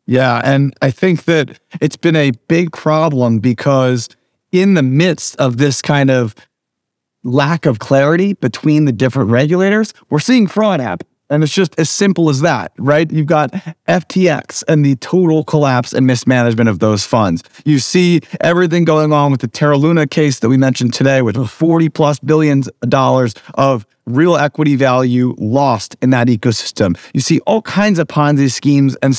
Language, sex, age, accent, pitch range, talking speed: English, male, 30-49, American, 130-175 Hz, 175 wpm